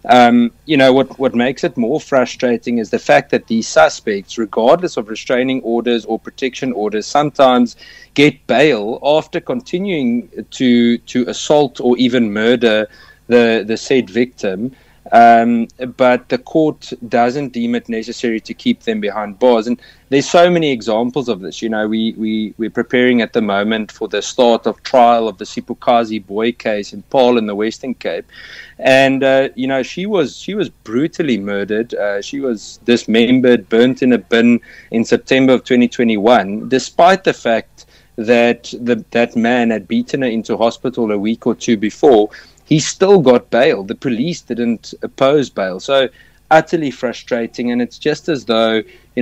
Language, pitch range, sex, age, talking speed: English, 110-130 Hz, male, 30-49, 170 wpm